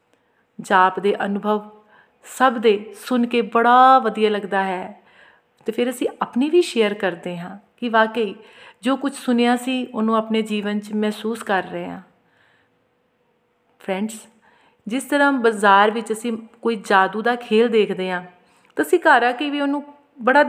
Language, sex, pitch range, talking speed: Punjabi, female, 200-240 Hz, 150 wpm